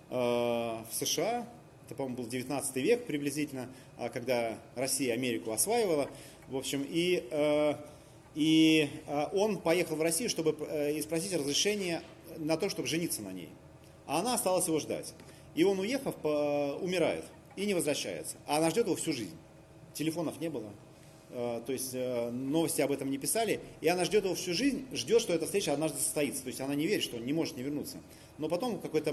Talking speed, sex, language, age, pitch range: 175 wpm, male, Russian, 30-49, 135-165 Hz